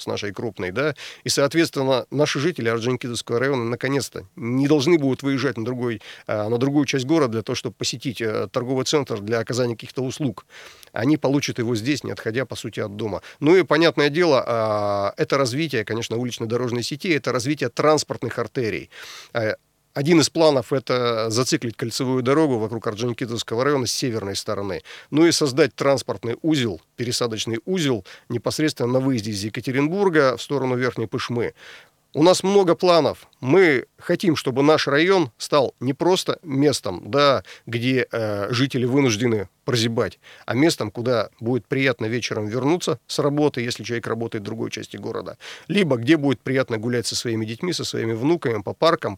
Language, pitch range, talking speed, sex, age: Russian, 115-150 Hz, 160 wpm, male, 40-59